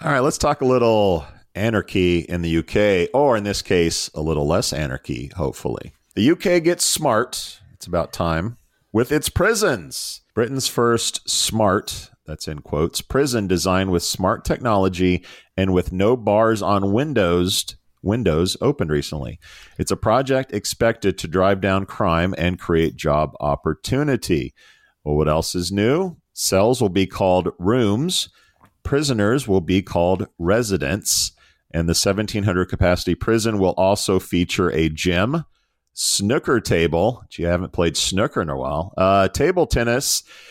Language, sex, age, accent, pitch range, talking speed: English, male, 40-59, American, 90-115 Hz, 145 wpm